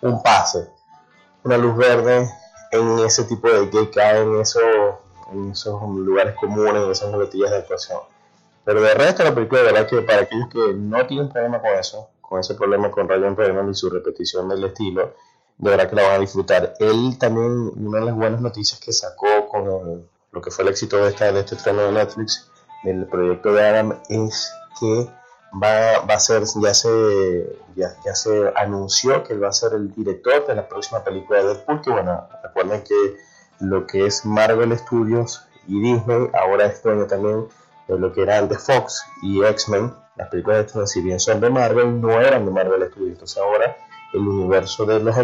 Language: Spanish